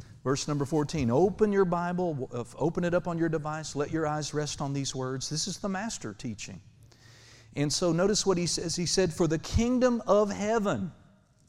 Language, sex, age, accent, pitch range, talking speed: English, male, 50-69, American, 125-185 Hz, 195 wpm